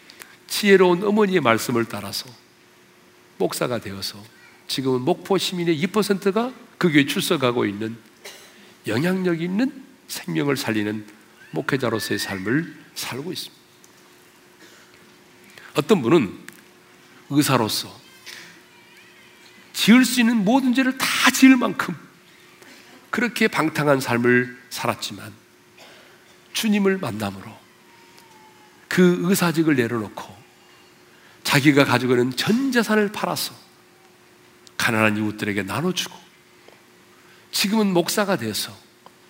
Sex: male